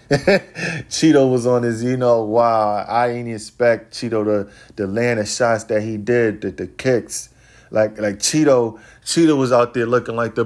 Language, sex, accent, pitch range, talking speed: English, male, American, 105-125 Hz, 195 wpm